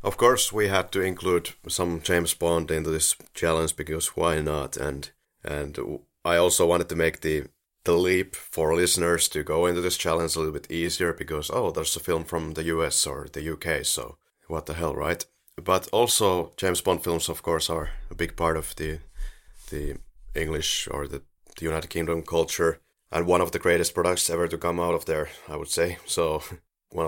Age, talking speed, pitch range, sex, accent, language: 30-49, 200 wpm, 80-90 Hz, male, Finnish, English